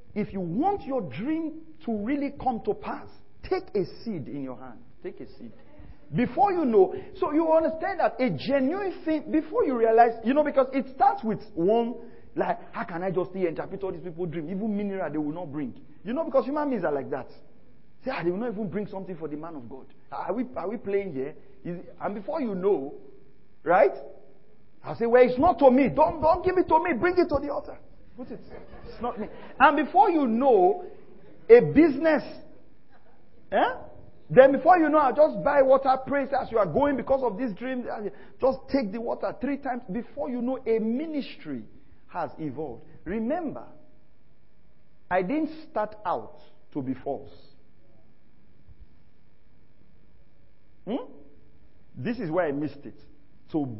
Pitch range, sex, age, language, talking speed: 185-300 Hz, male, 40-59, English, 185 wpm